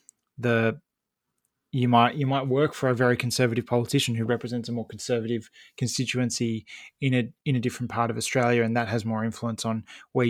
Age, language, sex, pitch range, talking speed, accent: 20-39, English, male, 120-140 Hz, 185 wpm, Australian